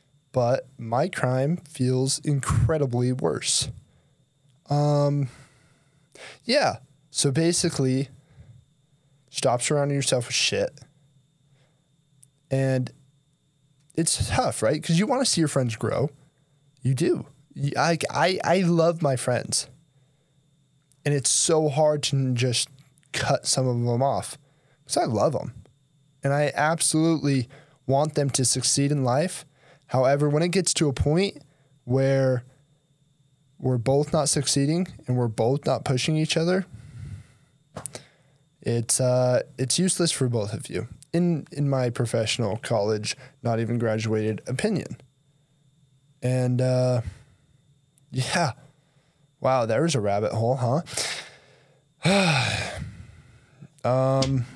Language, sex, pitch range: English, male, 130-145 Hz